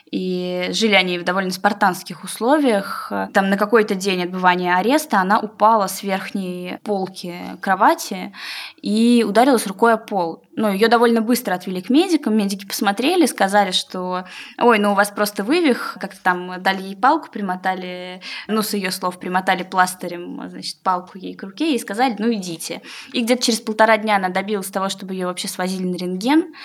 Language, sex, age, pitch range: Russian, female, 20-39, 185-230 Hz